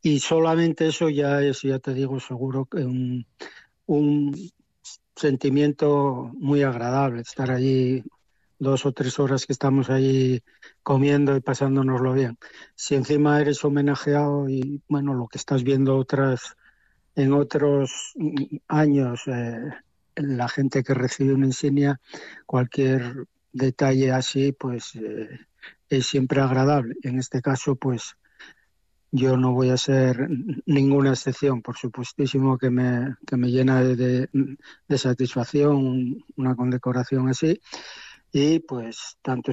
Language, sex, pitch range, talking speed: Spanish, male, 130-140 Hz, 130 wpm